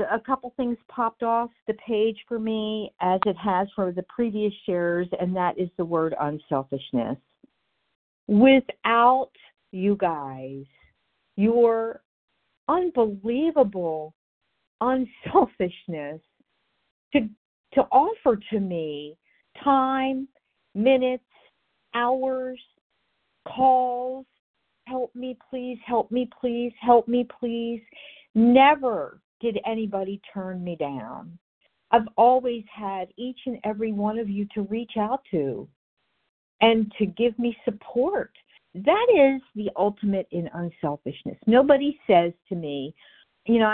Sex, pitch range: female, 180-250 Hz